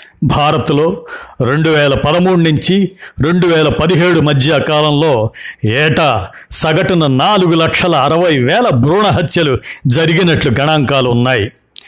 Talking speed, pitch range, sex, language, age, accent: 105 wpm, 125-165 Hz, male, Telugu, 60-79, native